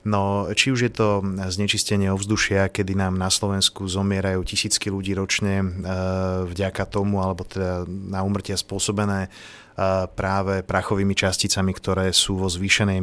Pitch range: 95-105 Hz